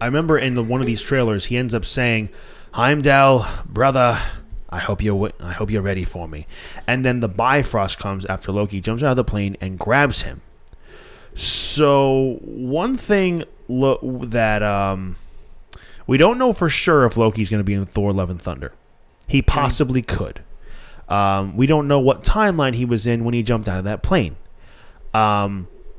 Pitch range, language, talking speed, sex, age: 100-125 Hz, English, 180 wpm, male, 20-39